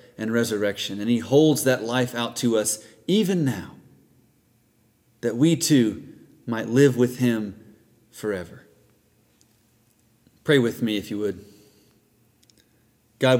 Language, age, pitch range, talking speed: English, 30-49, 110-130 Hz, 120 wpm